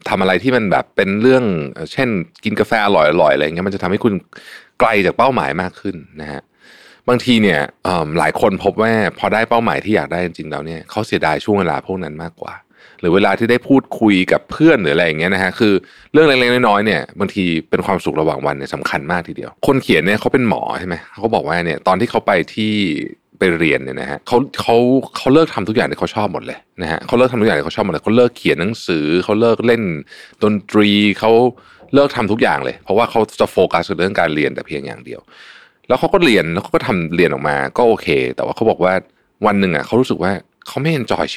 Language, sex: Thai, male